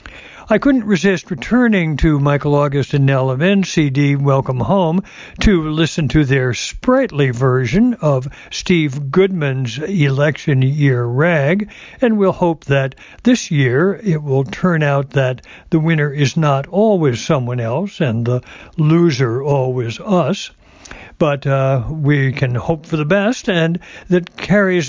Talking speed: 140 wpm